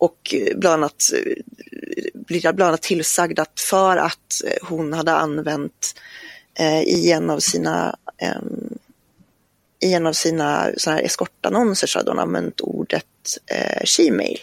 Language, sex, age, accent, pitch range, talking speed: Swedish, female, 30-49, native, 160-235 Hz, 100 wpm